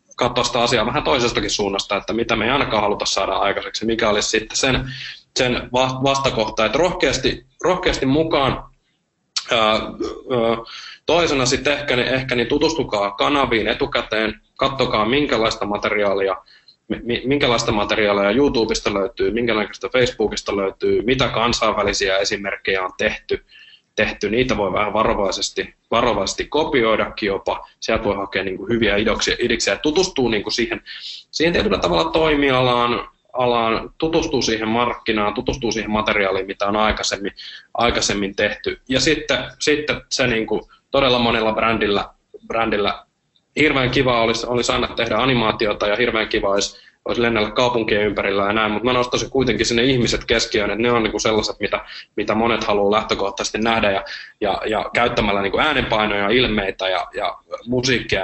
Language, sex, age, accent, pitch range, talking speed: Finnish, male, 20-39, native, 105-130 Hz, 140 wpm